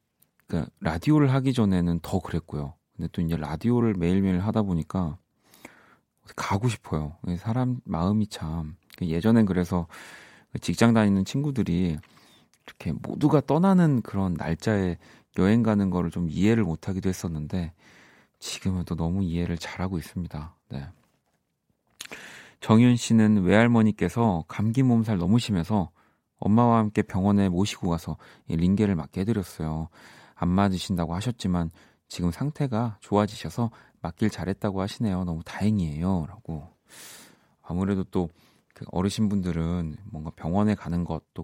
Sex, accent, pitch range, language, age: male, native, 85-110 Hz, Korean, 40-59